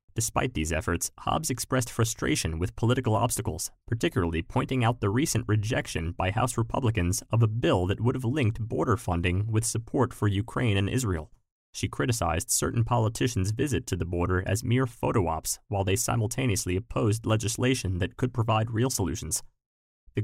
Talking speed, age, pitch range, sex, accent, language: 165 wpm, 30-49, 95-120 Hz, male, American, English